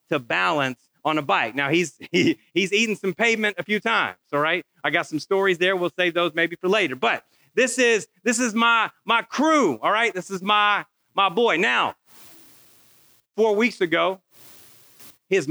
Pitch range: 160-195 Hz